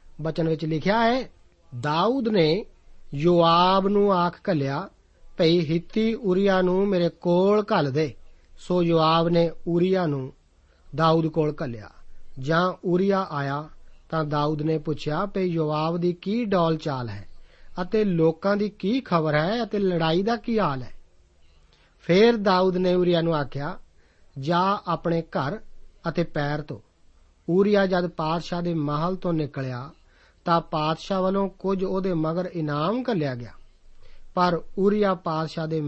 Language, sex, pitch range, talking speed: Punjabi, male, 145-185 Hz, 110 wpm